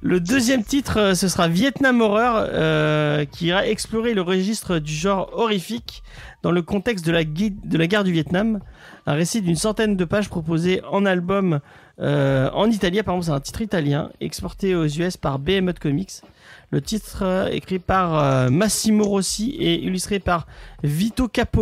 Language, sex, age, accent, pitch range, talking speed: French, male, 40-59, French, 160-210 Hz, 180 wpm